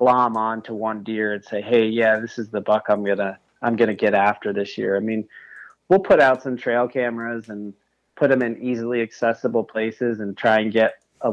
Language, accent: English, American